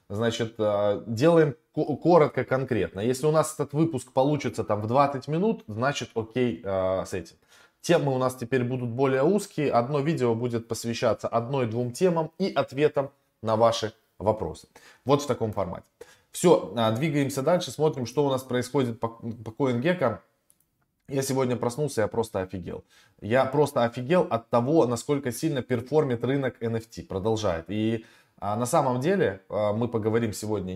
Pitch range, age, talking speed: 105-140 Hz, 20-39, 145 wpm